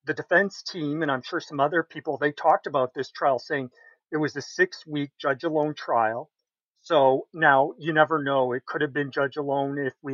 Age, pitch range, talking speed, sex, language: 40-59, 135-155 Hz, 195 wpm, male, English